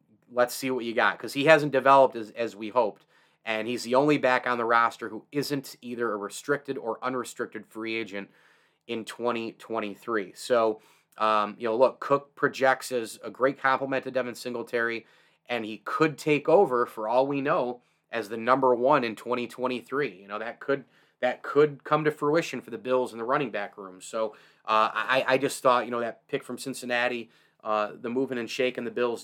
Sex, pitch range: male, 110-130 Hz